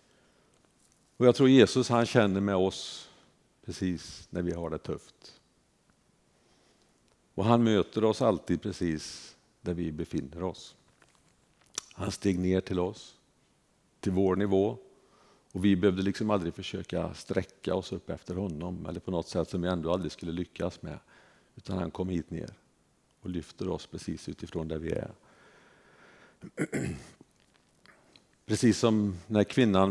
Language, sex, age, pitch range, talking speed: Swedish, male, 50-69, 85-105 Hz, 140 wpm